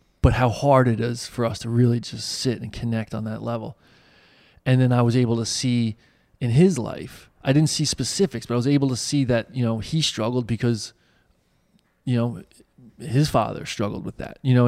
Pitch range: 110-130 Hz